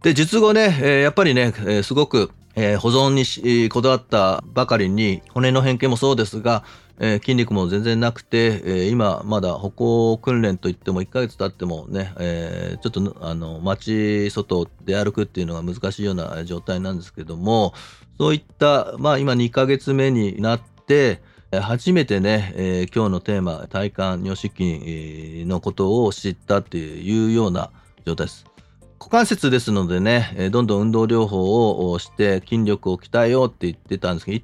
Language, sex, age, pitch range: Japanese, male, 40-59, 95-125 Hz